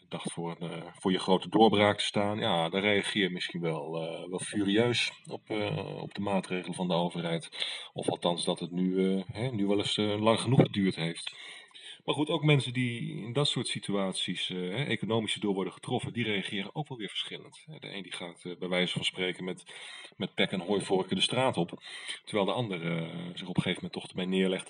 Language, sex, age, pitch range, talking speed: Dutch, male, 40-59, 90-125 Hz, 215 wpm